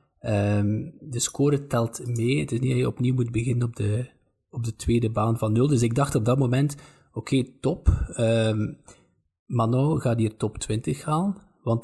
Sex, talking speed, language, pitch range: male, 170 wpm, Dutch, 110-135 Hz